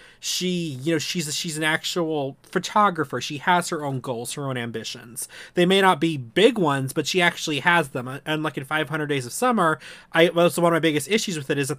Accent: American